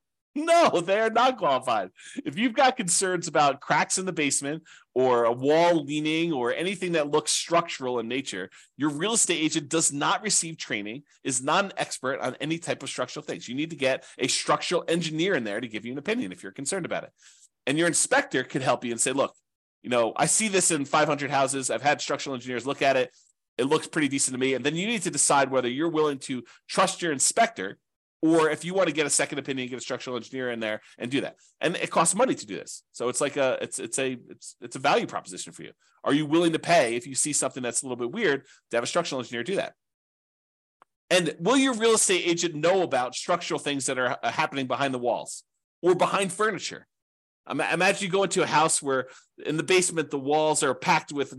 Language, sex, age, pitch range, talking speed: English, male, 30-49, 130-175 Hz, 230 wpm